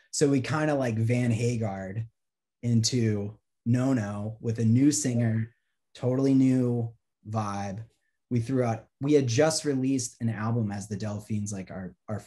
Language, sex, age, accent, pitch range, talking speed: English, male, 30-49, American, 110-125 Hz, 155 wpm